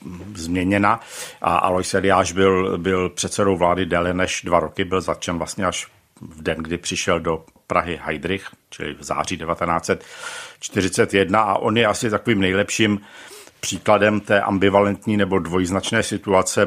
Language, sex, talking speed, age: Czech, male, 140 wpm, 60-79